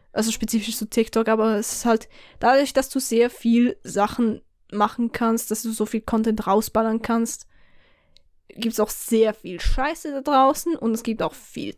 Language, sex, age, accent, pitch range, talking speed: German, female, 10-29, German, 215-265 Hz, 180 wpm